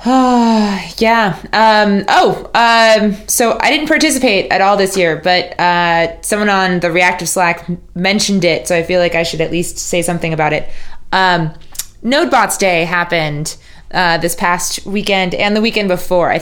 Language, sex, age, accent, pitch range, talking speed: English, female, 20-39, American, 170-215 Hz, 170 wpm